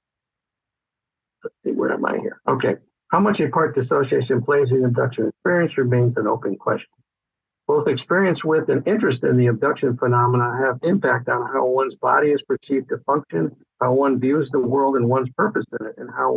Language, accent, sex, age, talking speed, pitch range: English, American, male, 60-79, 185 wpm, 125-150 Hz